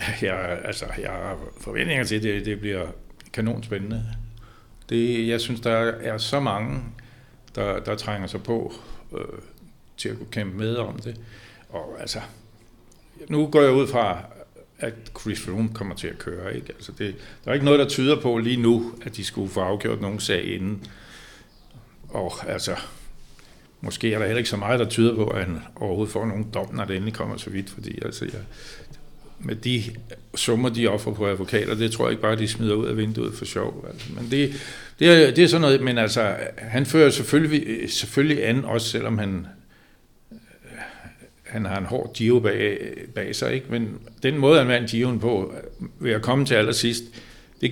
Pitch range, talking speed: 105-125 Hz, 190 wpm